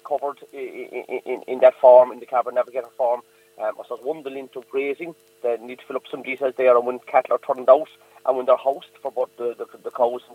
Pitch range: 115-135 Hz